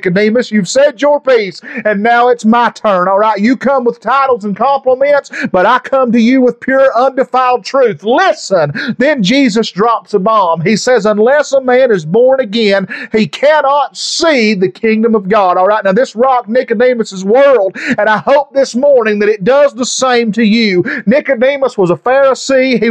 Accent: American